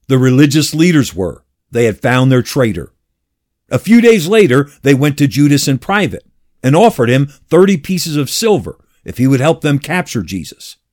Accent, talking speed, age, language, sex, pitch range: American, 180 wpm, 50-69, English, male, 125-180 Hz